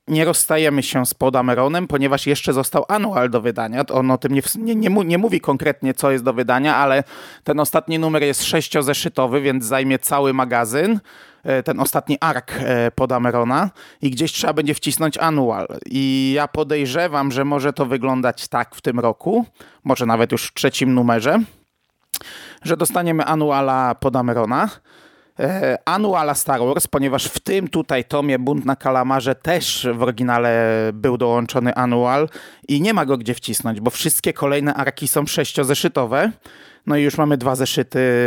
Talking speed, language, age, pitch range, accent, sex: 160 wpm, Polish, 30-49, 125-150 Hz, native, male